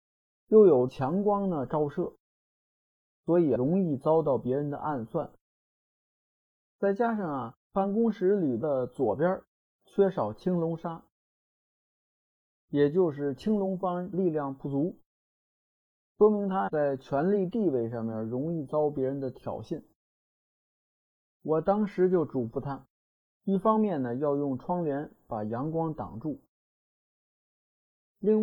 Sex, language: male, Chinese